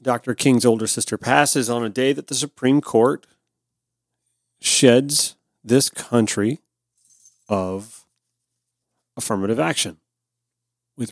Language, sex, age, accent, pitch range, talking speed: English, male, 40-59, American, 110-125 Hz, 105 wpm